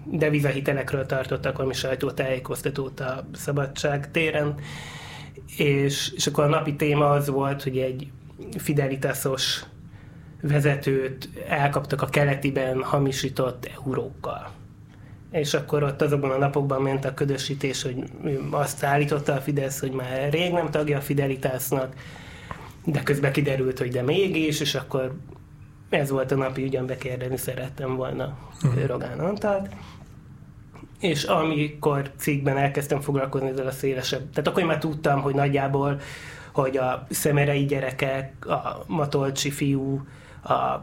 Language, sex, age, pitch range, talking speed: Hungarian, male, 20-39, 130-145 Hz, 125 wpm